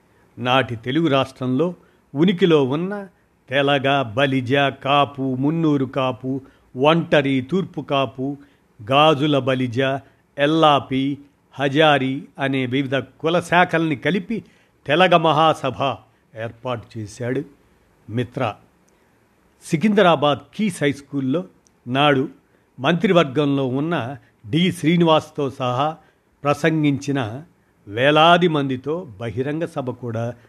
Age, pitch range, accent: 50-69, 130-155 Hz, native